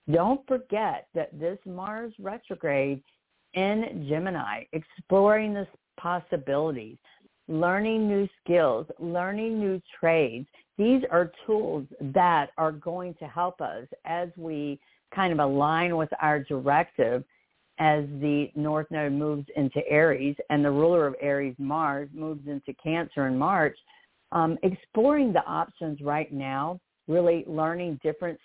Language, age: English, 50-69